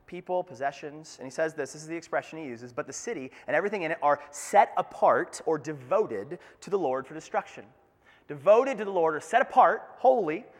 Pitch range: 160-250 Hz